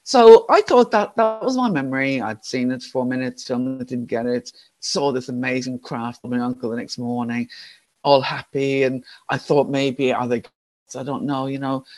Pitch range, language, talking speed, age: 125-155 Hz, English, 205 wpm, 50-69